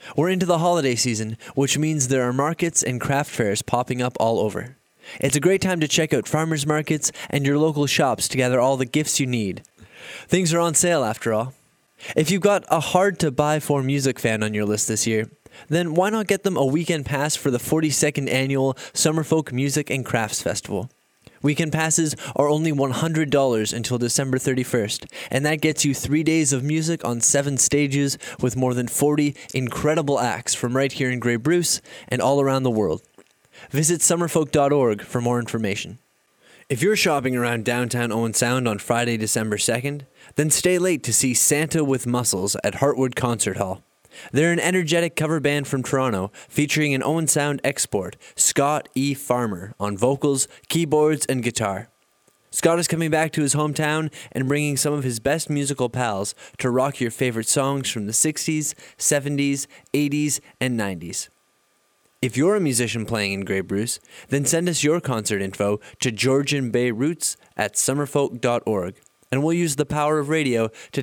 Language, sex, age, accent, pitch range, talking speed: English, male, 20-39, American, 125-155 Hz, 175 wpm